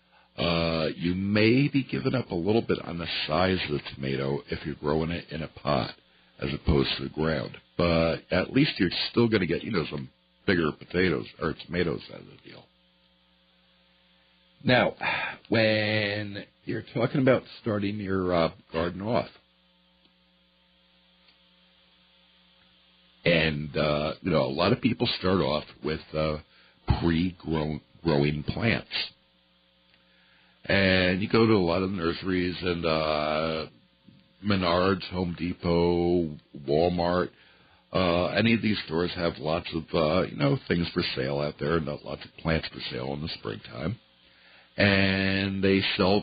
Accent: American